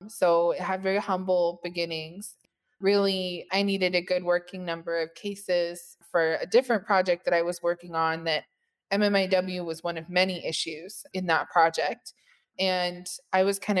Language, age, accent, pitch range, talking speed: English, 20-39, American, 175-195 Hz, 165 wpm